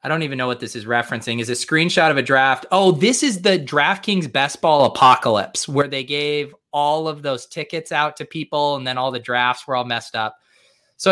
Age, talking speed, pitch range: 20-39, 225 wpm, 125-165 Hz